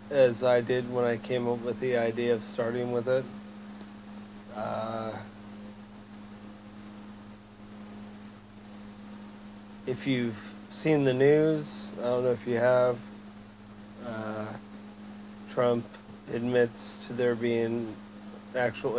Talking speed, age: 105 wpm, 40-59